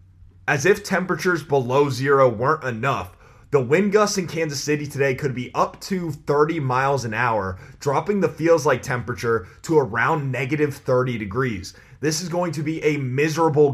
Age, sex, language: 20-39, male, English